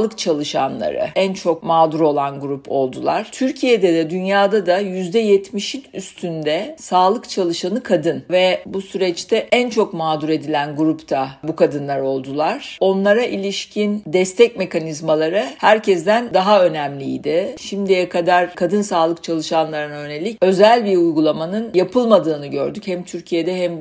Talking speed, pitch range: 120 wpm, 160-200 Hz